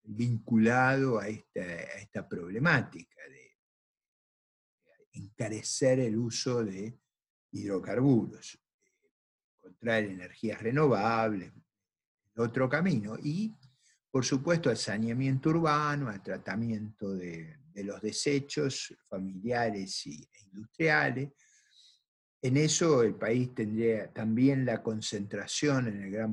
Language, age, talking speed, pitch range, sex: Spanish, 50-69, 105 wpm, 105-130 Hz, male